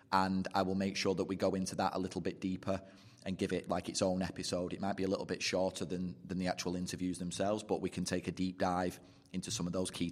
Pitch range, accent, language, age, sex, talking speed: 95-110 Hz, British, English, 30-49, male, 275 wpm